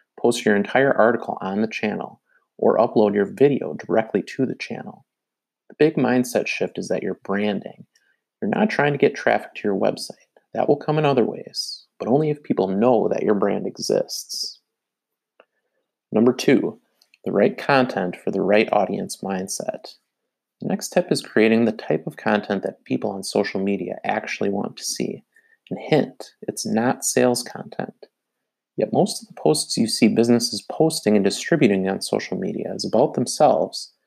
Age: 30-49